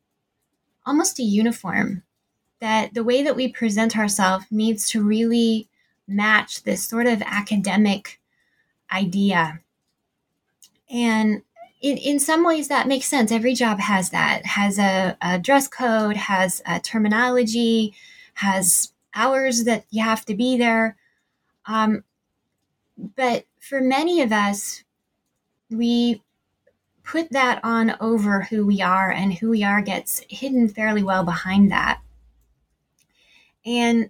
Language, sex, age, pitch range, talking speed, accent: English, female, 20-39, 200-240 Hz, 125 wpm, American